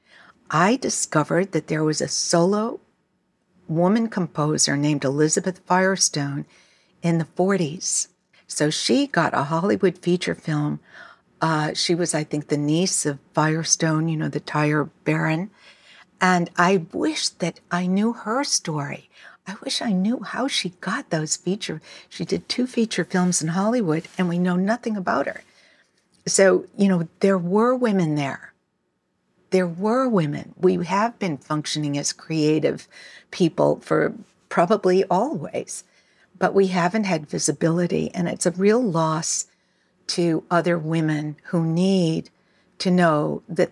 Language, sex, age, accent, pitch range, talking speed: English, female, 60-79, American, 160-195 Hz, 145 wpm